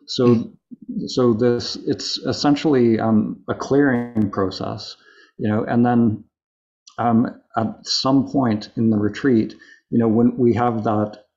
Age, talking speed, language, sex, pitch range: 50-69, 135 wpm, English, male, 105-120 Hz